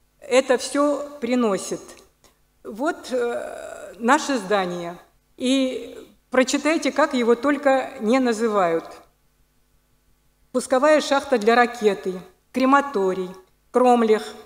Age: 50-69